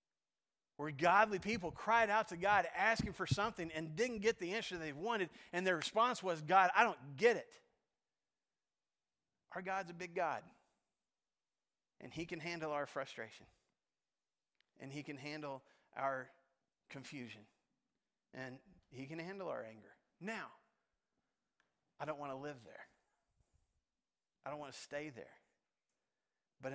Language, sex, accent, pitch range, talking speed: English, male, American, 135-190 Hz, 140 wpm